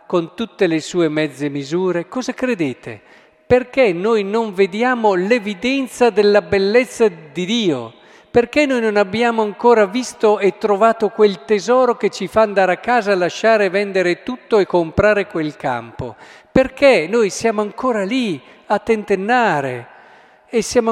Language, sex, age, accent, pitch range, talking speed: Italian, male, 50-69, native, 155-220 Hz, 145 wpm